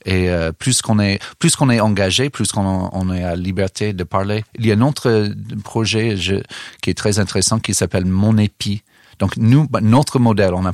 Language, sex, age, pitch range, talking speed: French, male, 40-59, 90-105 Hz, 210 wpm